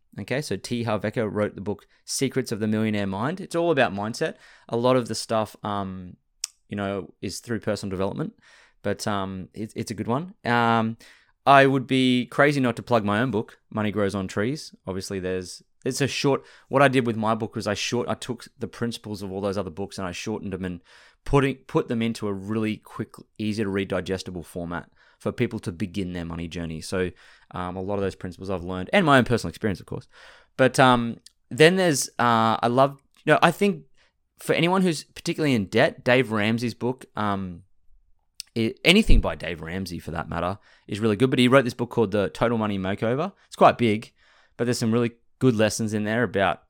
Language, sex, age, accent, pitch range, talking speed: English, male, 20-39, Australian, 95-125 Hz, 215 wpm